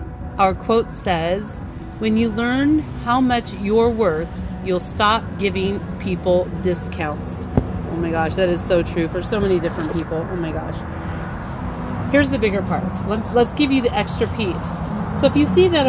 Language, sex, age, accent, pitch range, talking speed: English, female, 40-59, American, 160-235 Hz, 170 wpm